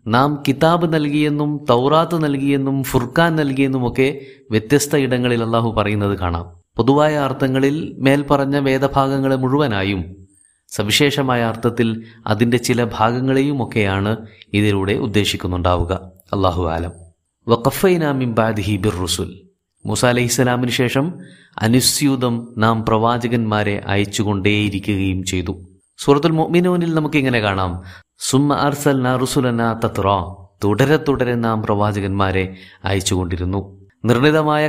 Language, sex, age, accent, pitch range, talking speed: Malayalam, male, 30-49, native, 100-135 Hz, 75 wpm